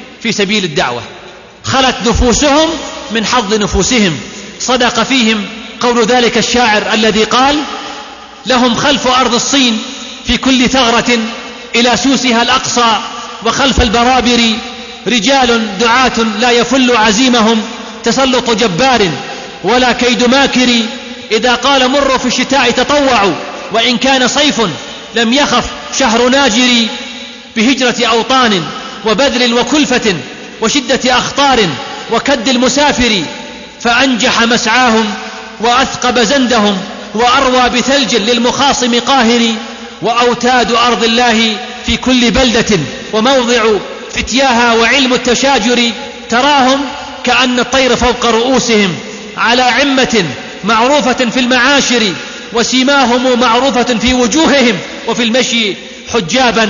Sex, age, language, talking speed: male, 30-49, Arabic, 100 wpm